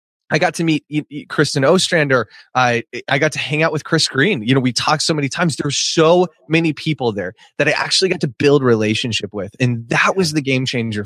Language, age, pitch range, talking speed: English, 20-39, 120-160 Hz, 220 wpm